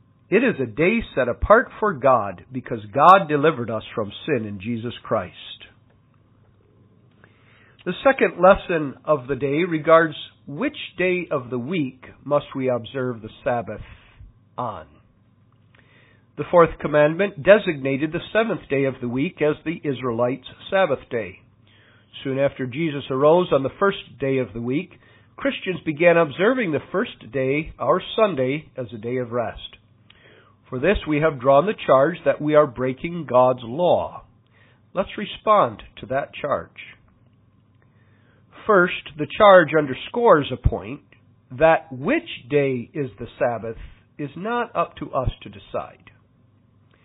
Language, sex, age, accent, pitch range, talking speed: English, male, 50-69, American, 115-160 Hz, 140 wpm